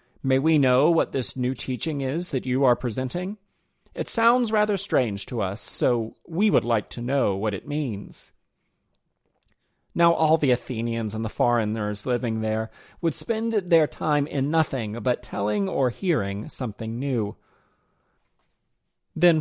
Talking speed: 150 wpm